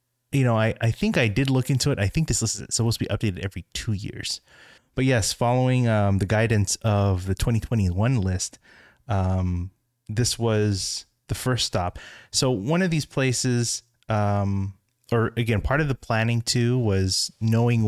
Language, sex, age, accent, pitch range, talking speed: English, male, 20-39, American, 95-120 Hz, 180 wpm